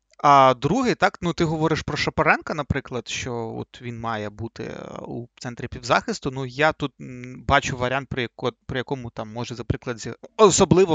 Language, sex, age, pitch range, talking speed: Ukrainian, male, 30-49, 125-155 Hz, 155 wpm